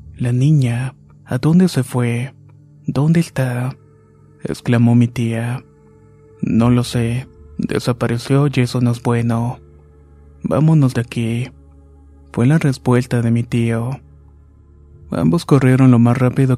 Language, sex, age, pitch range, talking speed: Spanish, male, 20-39, 115-125 Hz, 125 wpm